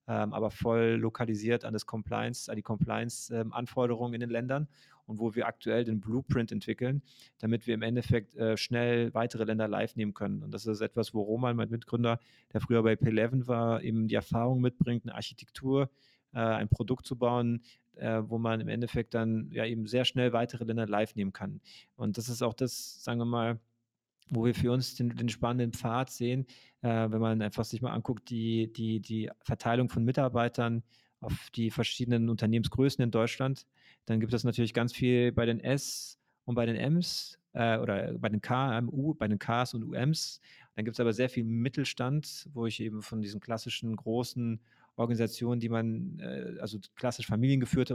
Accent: German